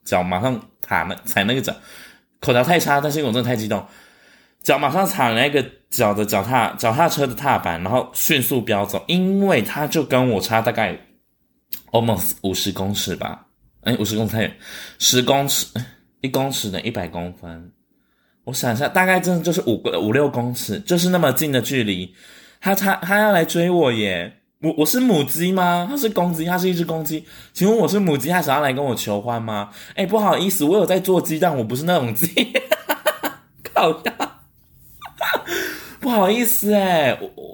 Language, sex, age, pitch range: Chinese, male, 20-39, 115-185 Hz